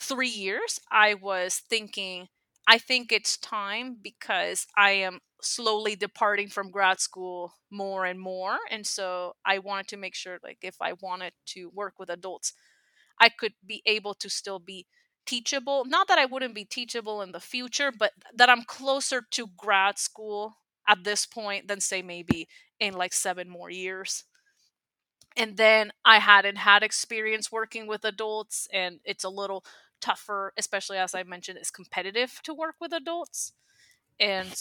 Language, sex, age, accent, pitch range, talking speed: English, female, 30-49, American, 190-225 Hz, 165 wpm